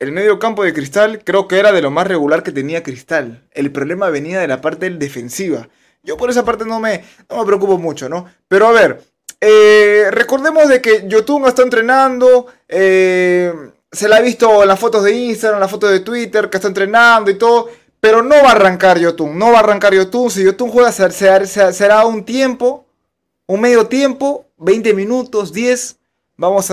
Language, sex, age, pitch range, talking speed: Spanish, male, 20-39, 170-220 Hz, 200 wpm